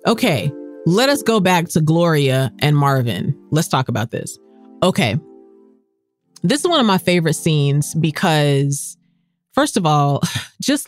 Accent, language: American, English